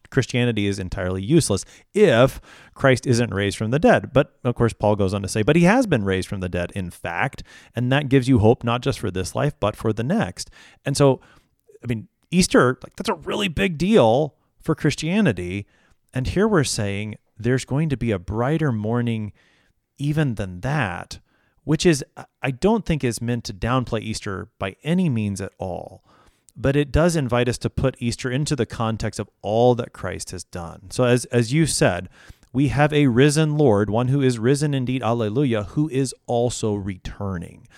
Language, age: English, 30-49